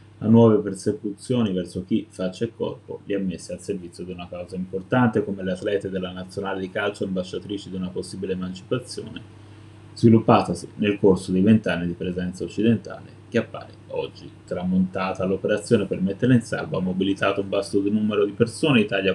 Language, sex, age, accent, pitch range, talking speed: Italian, male, 20-39, native, 95-110 Hz, 170 wpm